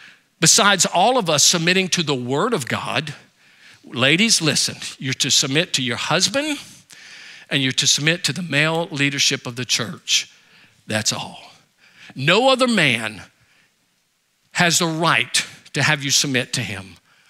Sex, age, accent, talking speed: male, 50-69, American, 150 wpm